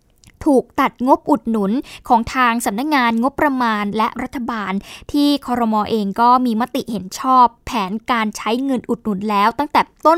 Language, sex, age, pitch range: Thai, female, 20-39, 220-290 Hz